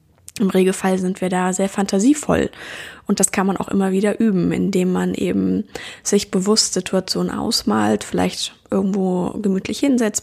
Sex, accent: female, German